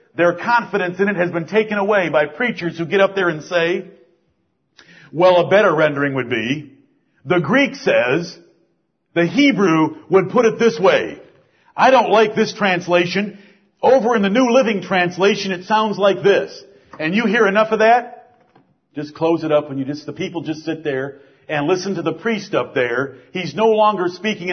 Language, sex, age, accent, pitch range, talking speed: English, male, 50-69, American, 175-225 Hz, 185 wpm